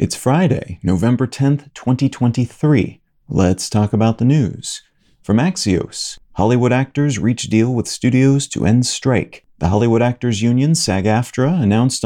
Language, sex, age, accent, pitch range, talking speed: English, male, 40-59, American, 105-130 Hz, 135 wpm